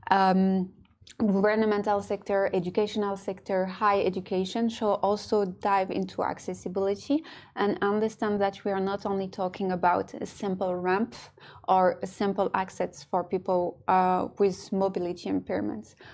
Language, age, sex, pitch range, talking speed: English, 20-39, female, 190-215 Hz, 125 wpm